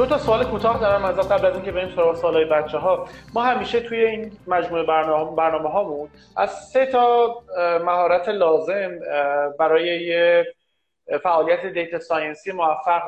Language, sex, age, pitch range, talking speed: Persian, male, 30-49, 165-220 Hz, 150 wpm